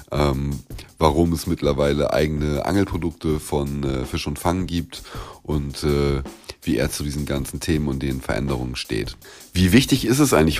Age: 30-49